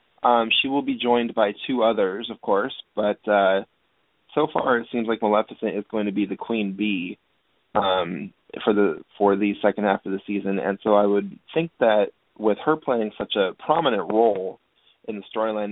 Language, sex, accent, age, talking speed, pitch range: English, male, American, 20-39, 195 wpm, 105-125 Hz